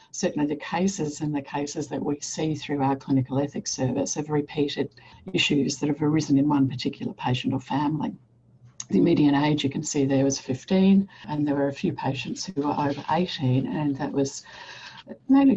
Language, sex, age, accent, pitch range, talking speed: English, female, 60-79, Australian, 135-155 Hz, 190 wpm